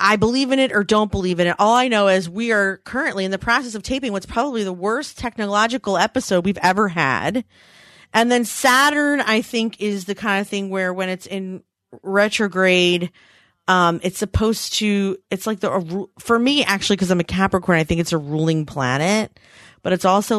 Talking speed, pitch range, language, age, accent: 200 wpm, 175-220 Hz, English, 30-49, American